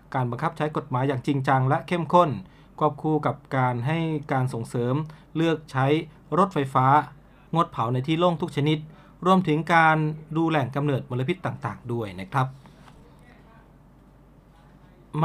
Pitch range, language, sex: 130-165 Hz, Thai, male